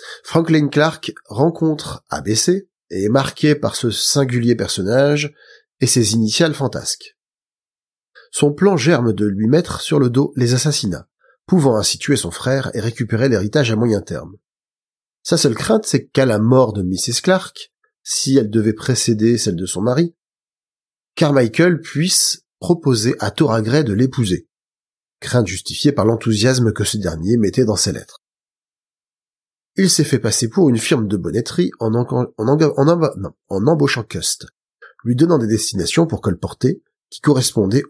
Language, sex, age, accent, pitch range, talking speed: French, male, 30-49, French, 110-155 Hz, 160 wpm